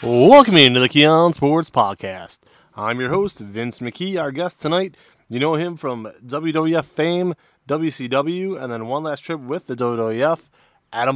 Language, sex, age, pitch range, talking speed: English, male, 20-39, 120-150 Hz, 160 wpm